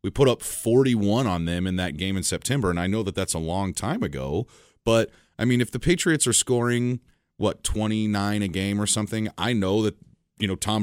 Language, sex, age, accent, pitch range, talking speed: English, male, 30-49, American, 90-120 Hz, 220 wpm